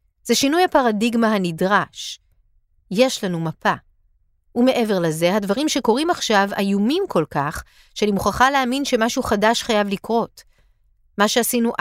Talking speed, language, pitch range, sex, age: 120 wpm, Hebrew, 180-250 Hz, female, 40-59